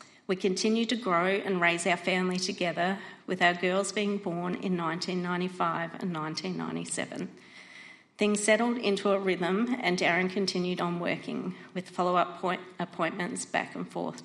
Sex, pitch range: female, 175-205 Hz